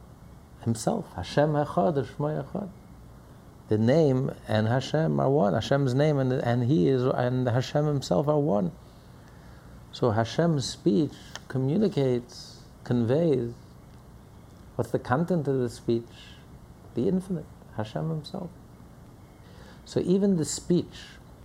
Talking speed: 105 wpm